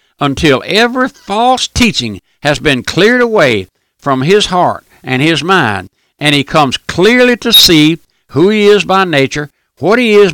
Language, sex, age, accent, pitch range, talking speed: English, male, 60-79, American, 130-195 Hz, 165 wpm